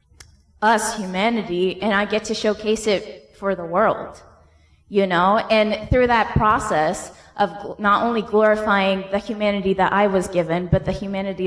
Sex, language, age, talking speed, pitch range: female, Arabic, 20-39, 155 wpm, 180-210 Hz